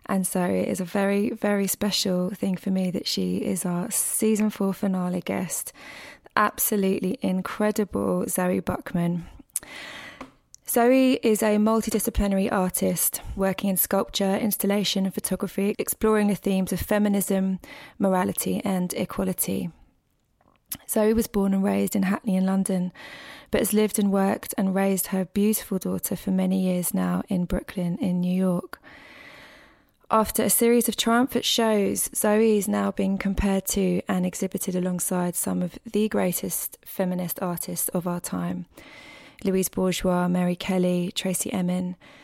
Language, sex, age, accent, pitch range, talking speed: English, female, 20-39, British, 185-215 Hz, 140 wpm